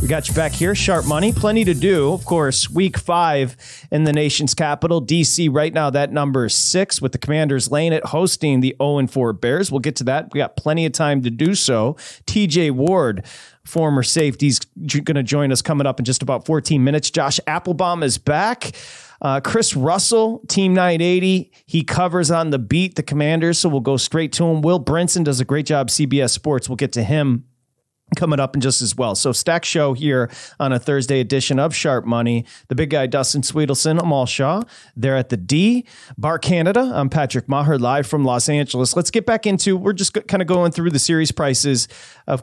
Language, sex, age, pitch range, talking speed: English, male, 30-49, 135-170 Hz, 210 wpm